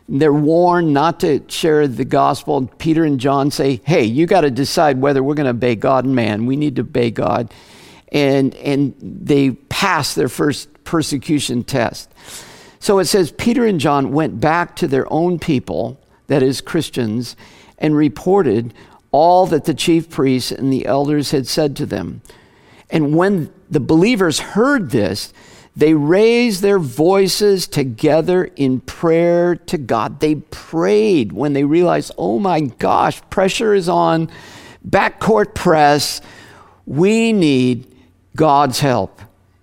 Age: 50-69